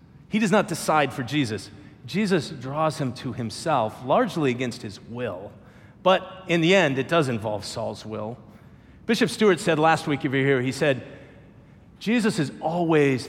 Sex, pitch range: male, 125-190 Hz